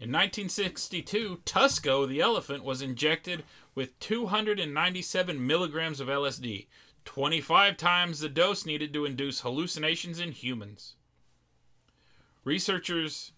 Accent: American